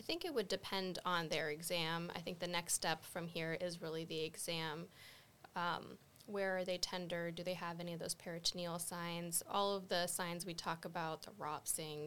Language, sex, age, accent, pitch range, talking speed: English, female, 10-29, American, 165-185 Hz, 205 wpm